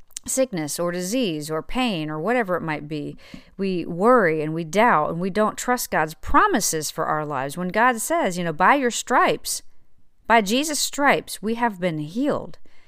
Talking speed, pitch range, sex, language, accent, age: 180 wpm, 155-225 Hz, female, English, American, 40-59